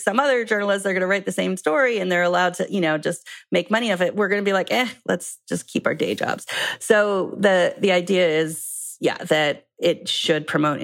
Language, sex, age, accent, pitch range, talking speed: English, female, 30-49, American, 160-210 Hz, 240 wpm